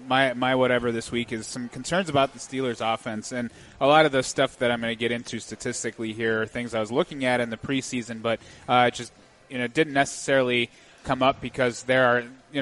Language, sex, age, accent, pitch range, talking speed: English, male, 30-49, American, 115-140 Hz, 230 wpm